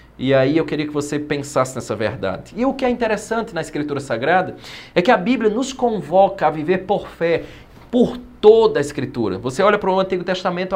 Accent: Brazilian